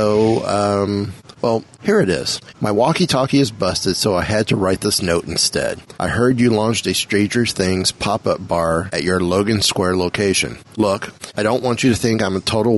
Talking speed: 195 wpm